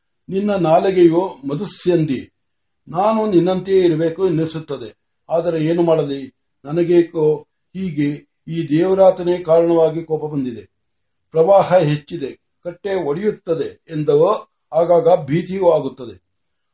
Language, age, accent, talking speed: Marathi, 60-79, native, 50 wpm